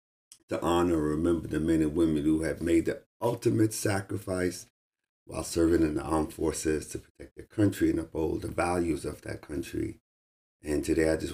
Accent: American